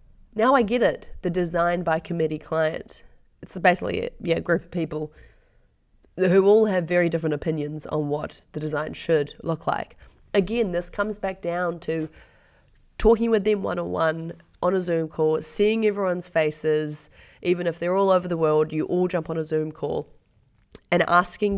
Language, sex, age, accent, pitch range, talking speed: English, female, 30-49, Australian, 160-195 Hz, 170 wpm